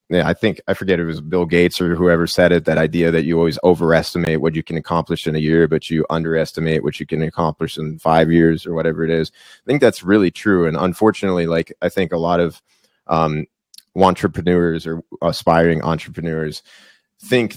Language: English